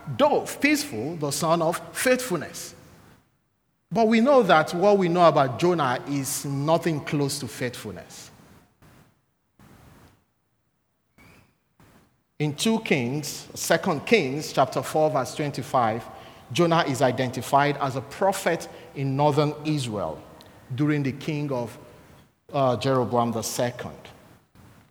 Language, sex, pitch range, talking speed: English, male, 145-185 Hz, 110 wpm